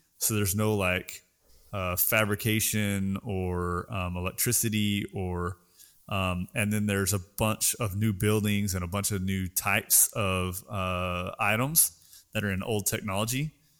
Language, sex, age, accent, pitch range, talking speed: English, male, 30-49, American, 95-110 Hz, 145 wpm